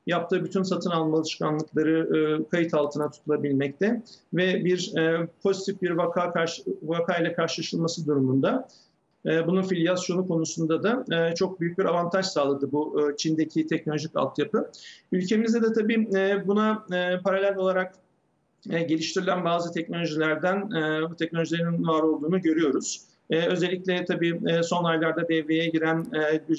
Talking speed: 115 wpm